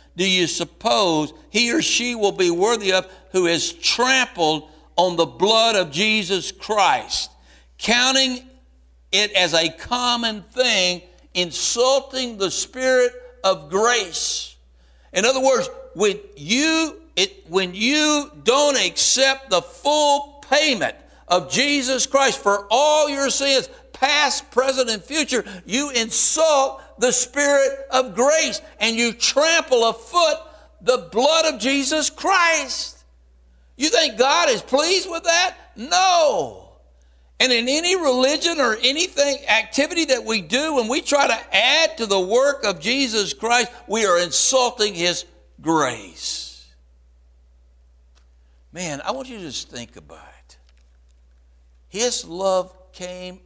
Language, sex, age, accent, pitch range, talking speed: English, male, 60-79, American, 170-275 Hz, 130 wpm